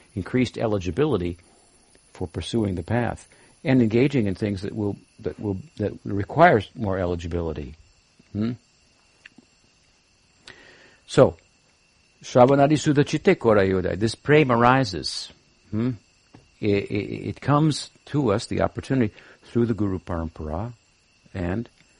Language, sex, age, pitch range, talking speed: English, male, 60-79, 90-120 Hz, 110 wpm